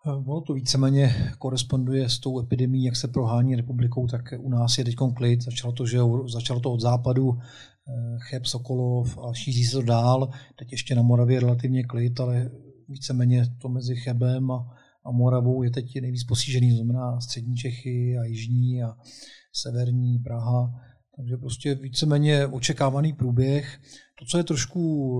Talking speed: 155 wpm